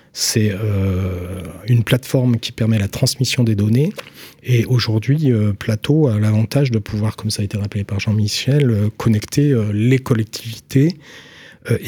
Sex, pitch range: male, 110-135 Hz